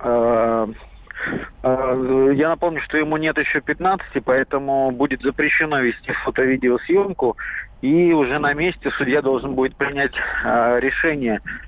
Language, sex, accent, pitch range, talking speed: Russian, male, native, 125-150 Hz, 110 wpm